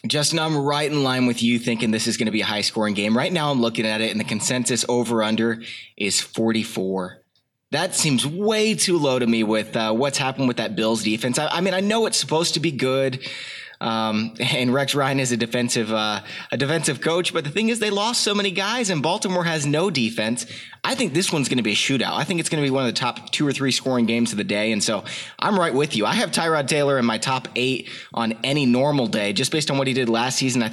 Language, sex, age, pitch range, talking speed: English, male, 20-39, 115-165 Hz, 260 wpm